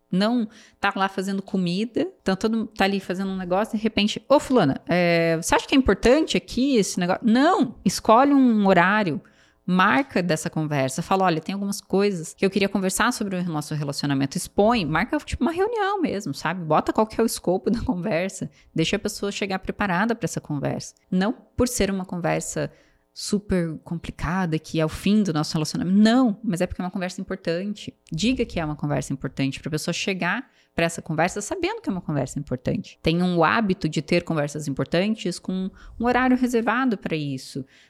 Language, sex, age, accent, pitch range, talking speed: Portuguese, female, 20-39, Brazilian, 165-215 Hz, 190 wpm